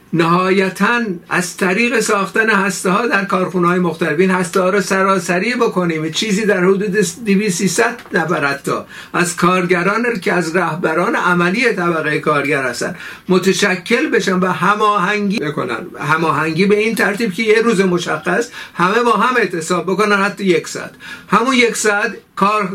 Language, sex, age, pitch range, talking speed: Persian, male, 60-79, 180-215 Hz, 145 wpm